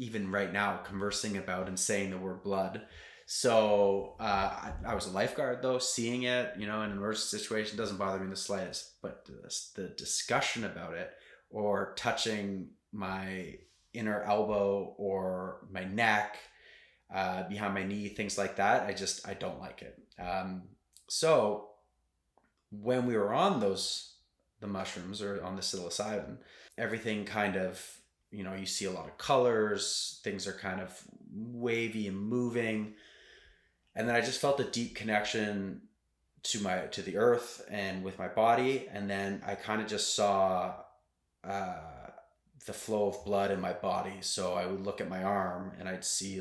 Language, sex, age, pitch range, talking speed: English, male, 20-39, 95-110 Hz, 170 wpm